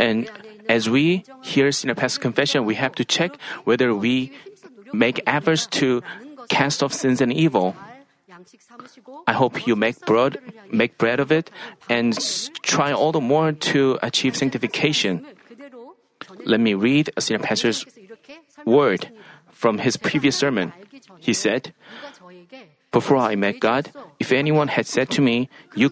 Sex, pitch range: male, 125-195 Hz